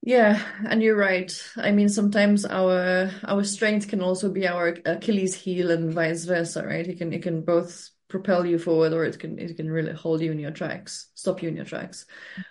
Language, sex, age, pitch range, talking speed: English, female, 20-39, 165-190 Hz, 210 wpm